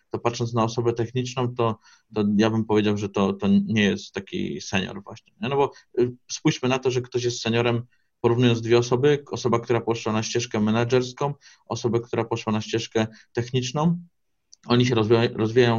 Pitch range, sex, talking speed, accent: 100-120 Hz, male, 175 wpm, native